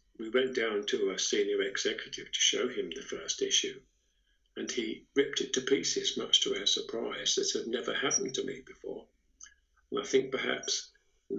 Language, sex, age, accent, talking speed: English, male, 50-69, British, 185 wpm